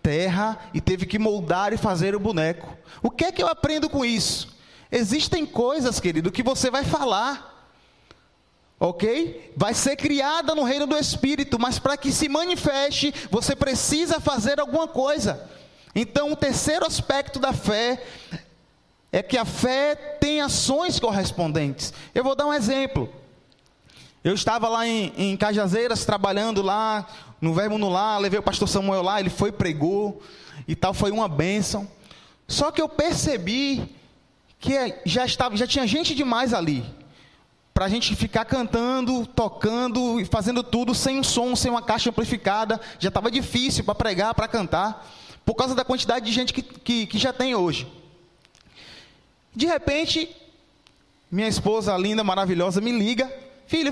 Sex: male